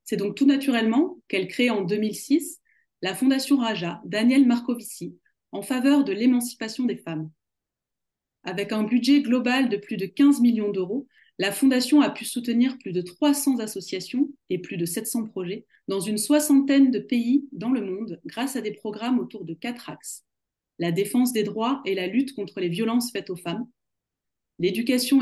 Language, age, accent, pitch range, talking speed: French, 30-49, French, 200-265 Hz, 175 wpm